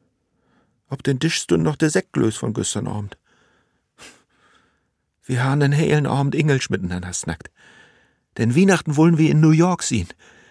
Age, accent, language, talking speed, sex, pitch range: 60-79, German, German, 145 wpm, male, 90-140 Hz